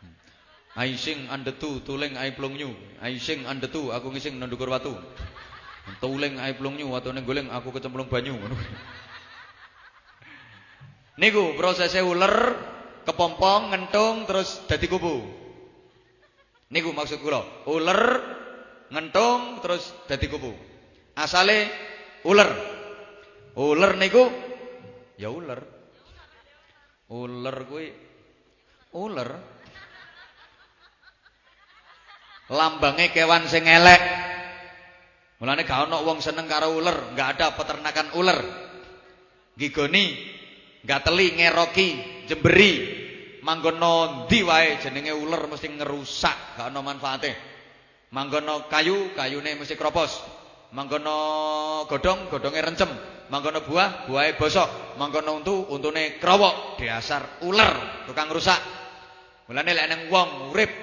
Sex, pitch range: male, 135-180 Hz